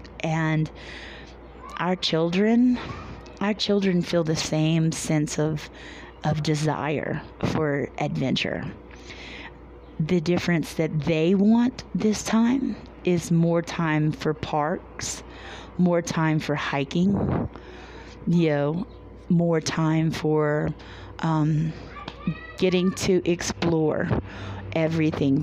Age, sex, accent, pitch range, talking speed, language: 30-49, female, American, 155-195 Hz, 95 wpm, English